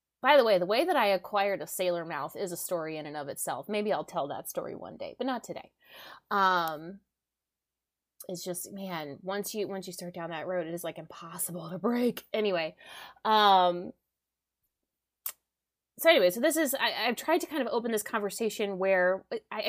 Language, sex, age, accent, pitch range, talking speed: English, female, 20-39, American, 180-245 Hz, 195 wpm